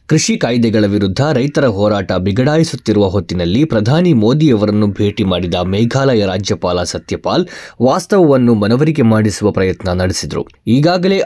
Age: 20-39